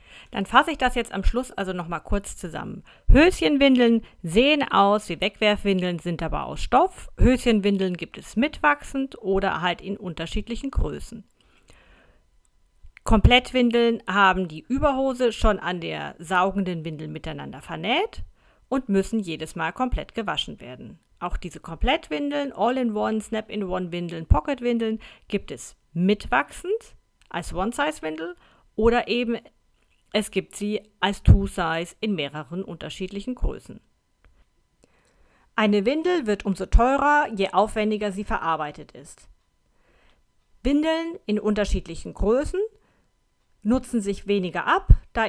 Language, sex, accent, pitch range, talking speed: German, female, German, 180-245 Hz, 120 wpm